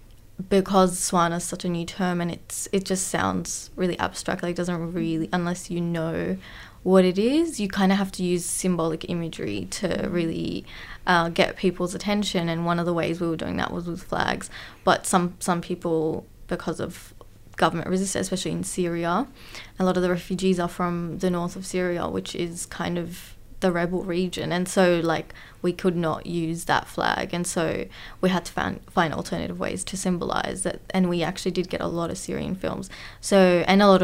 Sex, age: female, 20-39